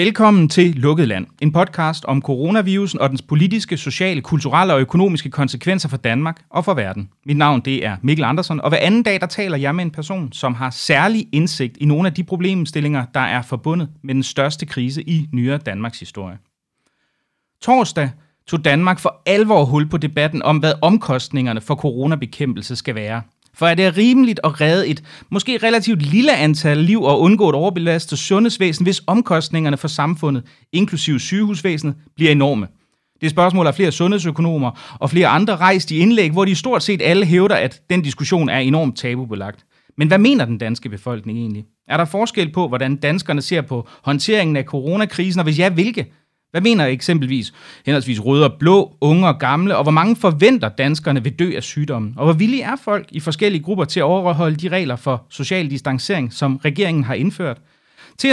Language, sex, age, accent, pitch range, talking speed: Danish, male, 30-49, native, 140-185 Hz, 190 wpm